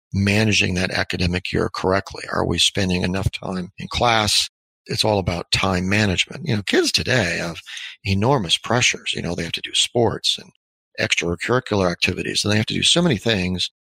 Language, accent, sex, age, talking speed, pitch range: English, American, male, 40-59, 180 wpm, 90-110 Hz